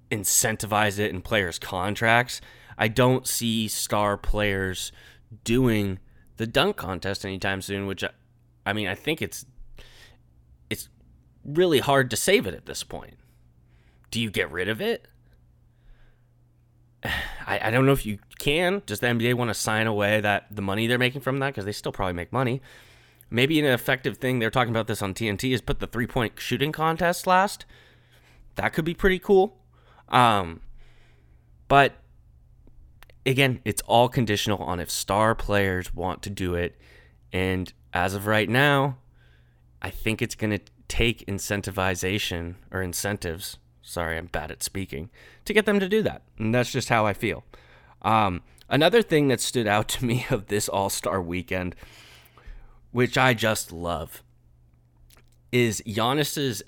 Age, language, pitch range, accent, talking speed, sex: 20-39, English, 90-125 Hz, American, 160 wpm, male